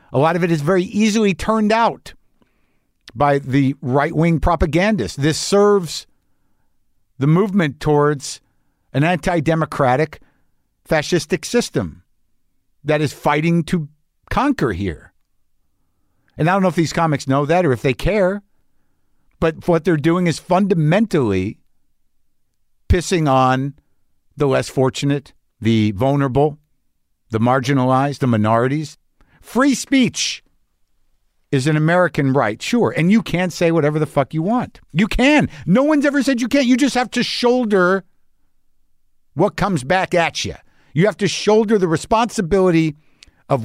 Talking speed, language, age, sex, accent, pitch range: 135 wpm, English, 50-69, male, American, 130-185 Hz